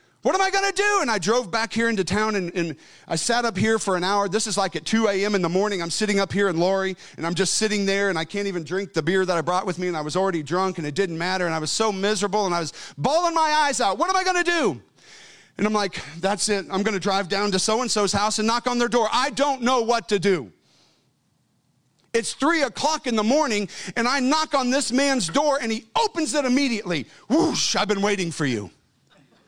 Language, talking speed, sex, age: English, 255 wpm, male, 40-59